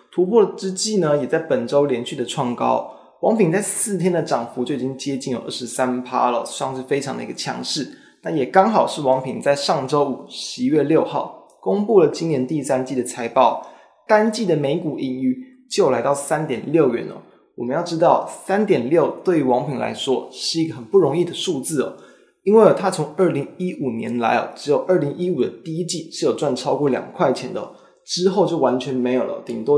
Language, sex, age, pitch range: Chinese, male, 20-39, 130-190 Hz